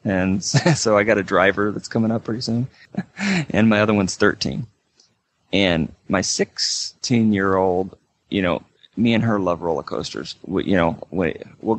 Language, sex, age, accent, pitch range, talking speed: English, male, 30-49, American, 90-105 Hz, 155 wpm